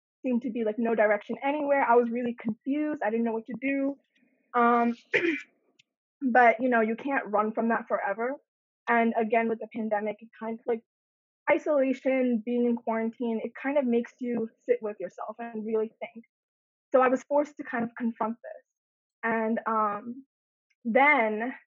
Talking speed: 175 wpm